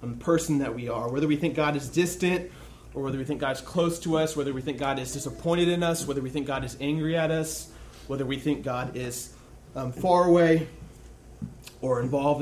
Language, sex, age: English, male, 30-49